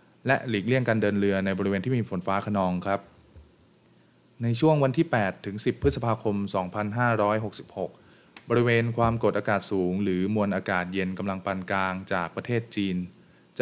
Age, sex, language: 20-39, male, Thai